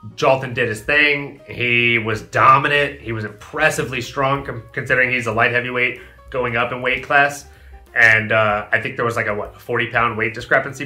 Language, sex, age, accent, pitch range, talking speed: English, male, 30-49, American, 120-140 Hz, 180 wpm